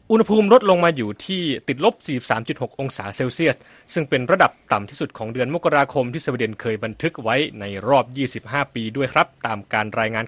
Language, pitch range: Thai, 120-180 Hz